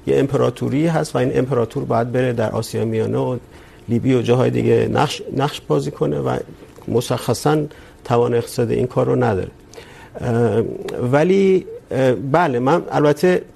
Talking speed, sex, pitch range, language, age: 145 wpm, male, 115-150 Hz, Urdu, 50-69